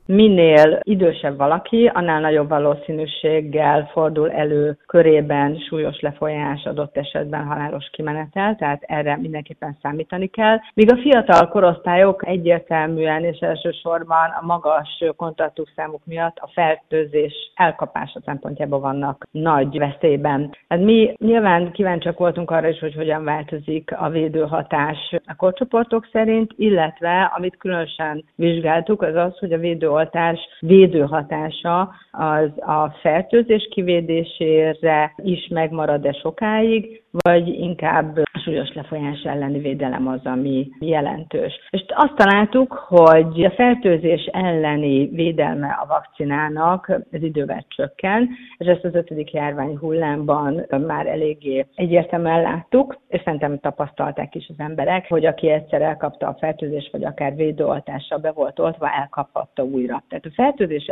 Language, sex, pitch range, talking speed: Hungarian, female, 150-180 Hz, 125 wpm